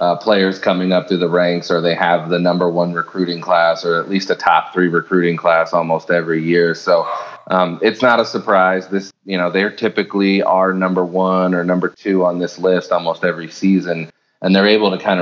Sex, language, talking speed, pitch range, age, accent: male, English, 215 wpm, 85-95 Hz, 30-49, American